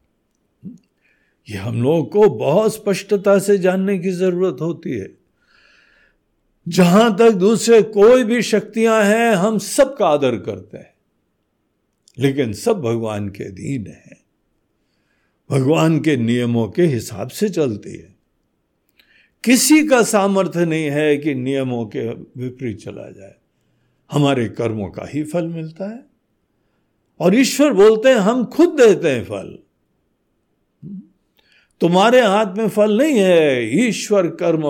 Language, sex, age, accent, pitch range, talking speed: Hindi, male, 60-79, native, 145-215 Hz, 125 wpm